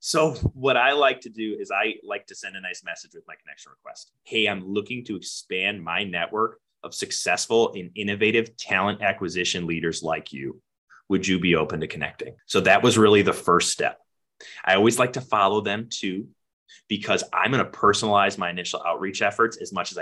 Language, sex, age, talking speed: English, male, 20-39, 200 wpm